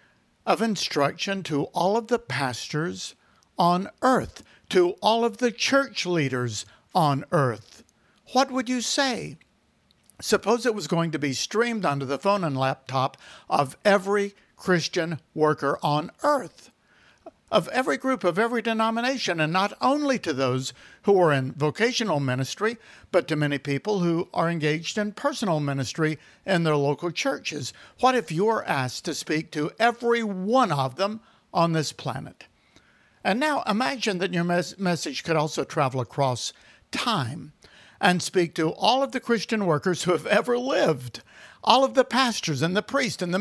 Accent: American